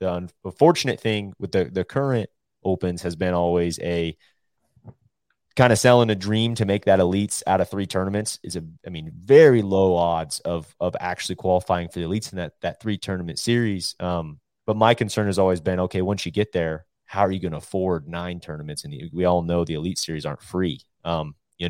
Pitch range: 85-100 Hz